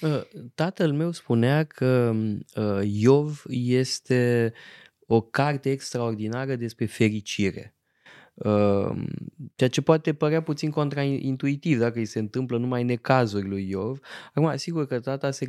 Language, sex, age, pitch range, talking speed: Romanian, male, 20-39, 110-140 Hz, 125 wpm